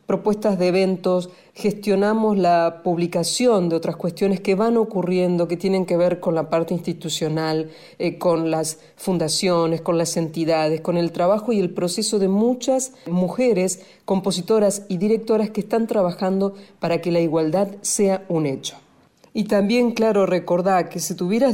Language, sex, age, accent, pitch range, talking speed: Spanish, female, 40-59, Argentinian, 170-220 Hz, 155 wpm